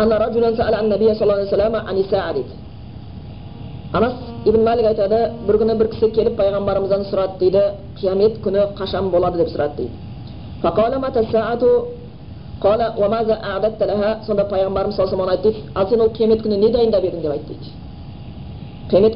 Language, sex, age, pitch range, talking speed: Bulgarian, female, 30-49, 195-225 Hz, 135 wpm